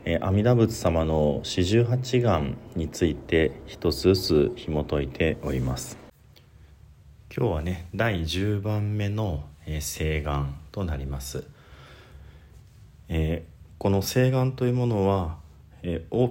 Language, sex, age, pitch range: Japanese, male, 40-59, 75-100 Hz